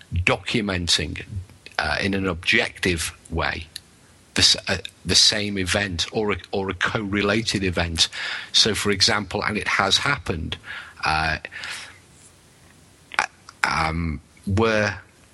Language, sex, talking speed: English, male, 100 wpm